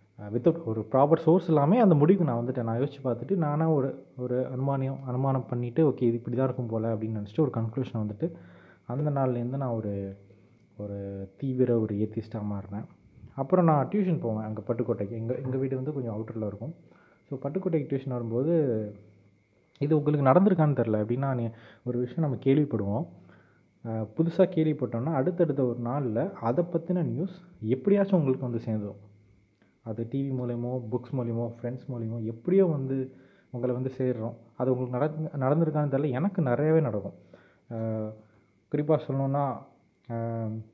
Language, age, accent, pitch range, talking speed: Tamil, 20-39, native, 115-150 Hz, 140 wpm